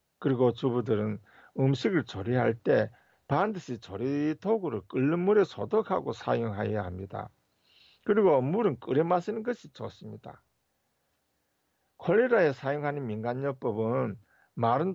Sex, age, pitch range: male, 50-69, 115-175 Hz